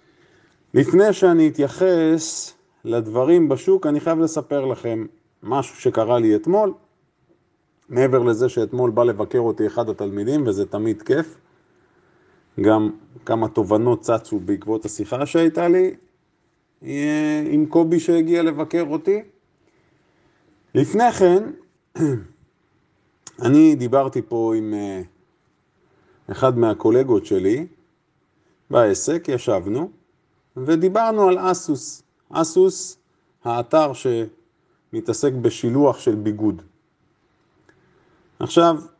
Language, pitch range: Hebrew, 115-180 Hz